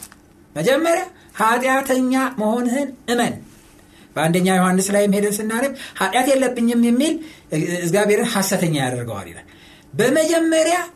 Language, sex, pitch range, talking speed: Amharic, male, 160-235 Hz, 95 wpm